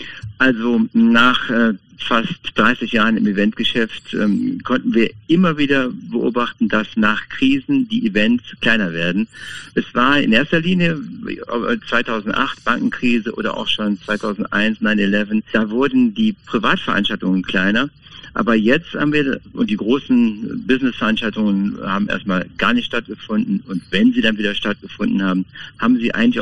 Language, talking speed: German, 135 wpm